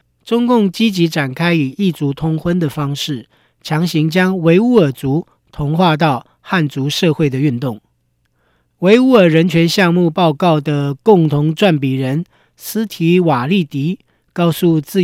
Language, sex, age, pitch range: Chinese, male, 40-59, 145-185 Hz